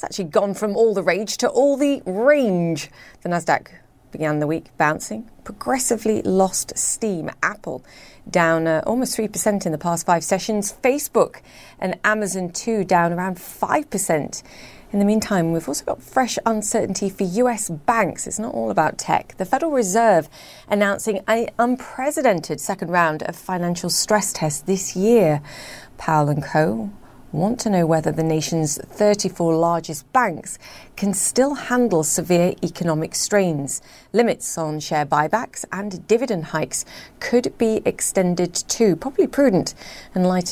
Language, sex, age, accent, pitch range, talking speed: English, female, 30-49, British, 165-215 Hz, 145 wpm